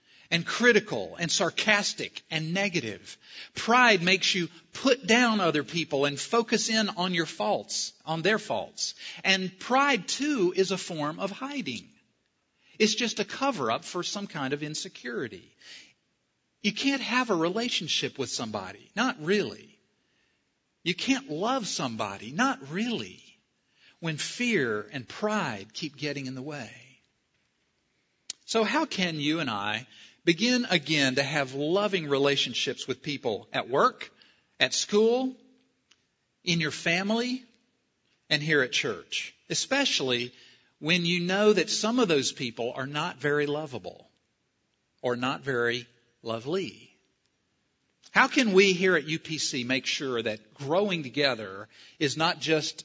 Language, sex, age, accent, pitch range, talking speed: English, male, 50-69, American, 140-215 Hz, 135 wpm